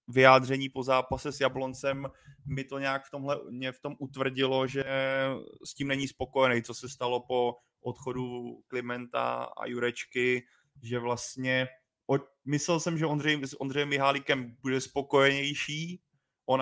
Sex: male